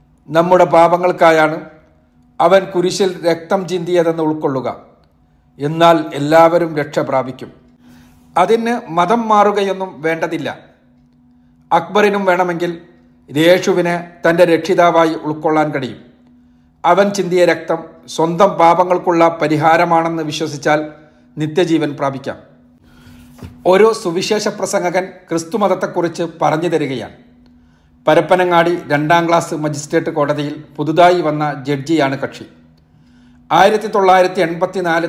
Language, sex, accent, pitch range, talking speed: Malayalam, male, native, 140-180 Hz, 85 wpm